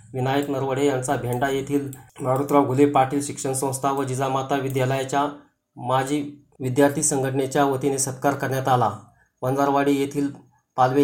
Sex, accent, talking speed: male, native, 125 wpm